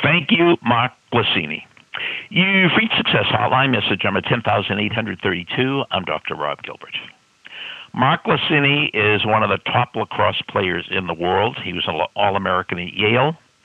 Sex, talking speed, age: male, 165 wpm, 60-79